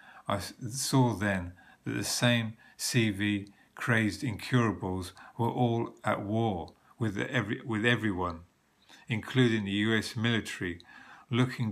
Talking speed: 115 wpm